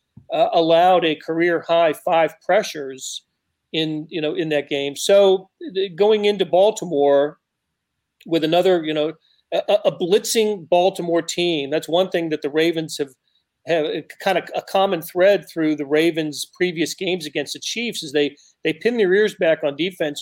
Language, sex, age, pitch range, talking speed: English, male, 40-59, 145-180 Hz, 165 wpm